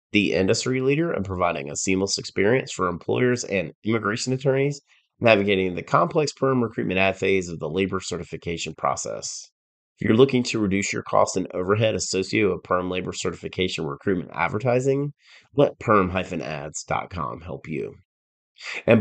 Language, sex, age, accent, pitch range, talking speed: English, male, 30-49, American, 90-120 Hz, 145 wpm